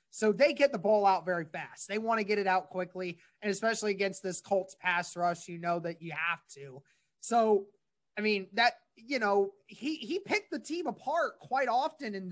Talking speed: 210 wpm